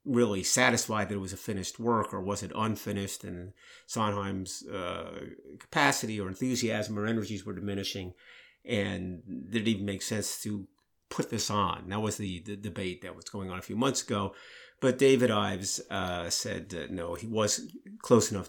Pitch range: 95-110 Hz